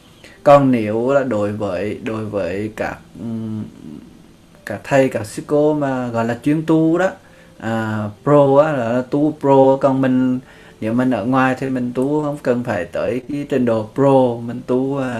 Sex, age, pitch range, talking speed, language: male, 20-39, 115-145 Hz, 190 wpm, Vietnamese